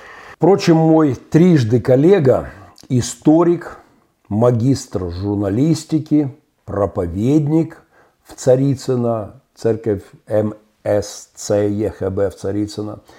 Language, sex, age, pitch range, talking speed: Russian, male, 50-69, 105-140 Hz, 65 wpm